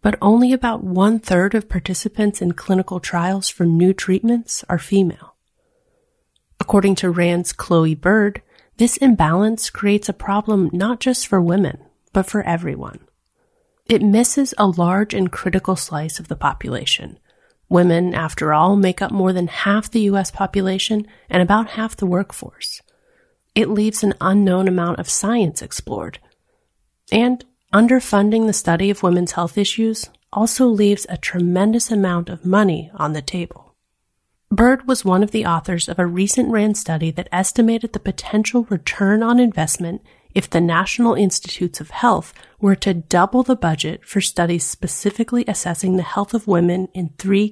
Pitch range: 175-220 Hz